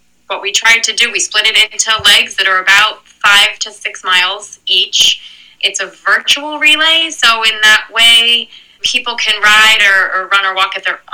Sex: female